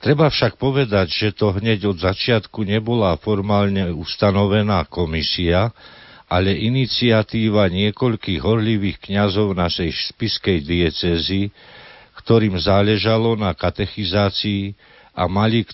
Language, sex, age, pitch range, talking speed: Slovak, male, 50-69, 95-115 Hz, 105 wpm